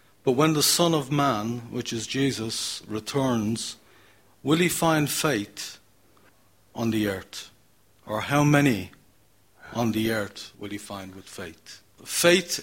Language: Danish